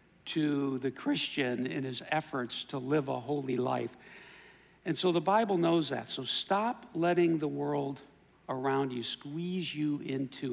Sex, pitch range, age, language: male, 130-170 Hz, 60-79, English